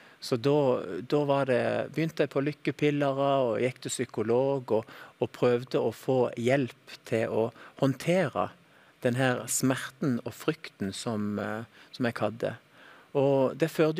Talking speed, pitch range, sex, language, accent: 135 wpm, 120-145 Hz, male, English, Norwegian